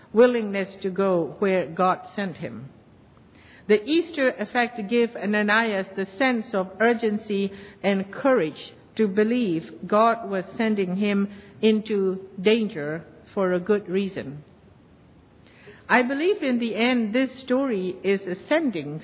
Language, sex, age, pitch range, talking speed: English, female, 60-79, 190-235 Hz, 125 wpm